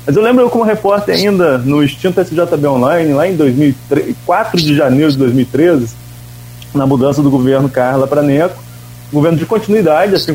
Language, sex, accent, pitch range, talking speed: Portuguese, male, Brazilian, 125-170 Hz, 170 wpm